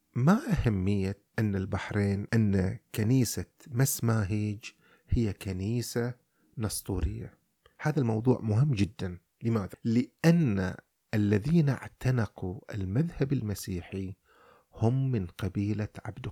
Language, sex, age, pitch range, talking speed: Arabic, male, 30-49, 95-125 Hz, 90 wpm